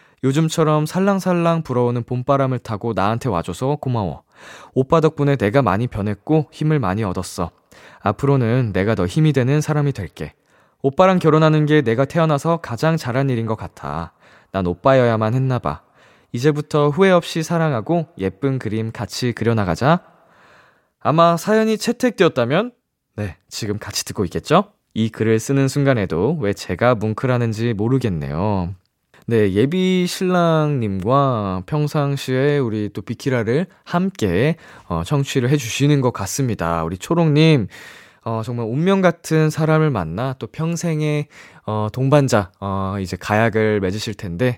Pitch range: 105-160 Hz